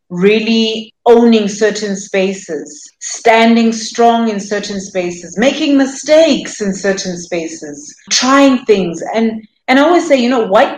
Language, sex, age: English, female, 30-49